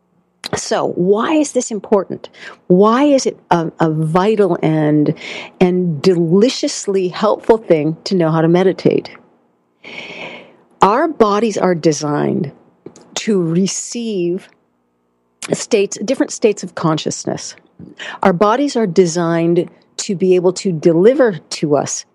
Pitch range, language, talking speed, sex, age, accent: 160-205 Hz, English, 115 wpm, female, 50-69, American